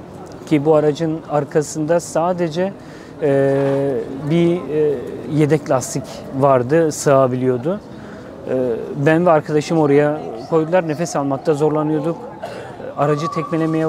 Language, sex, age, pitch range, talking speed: Turkish, male, 40-59, 145-170 Hz, 100 wpm